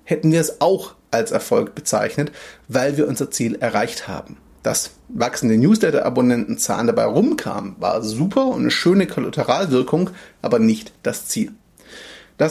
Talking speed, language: 140 wpm, German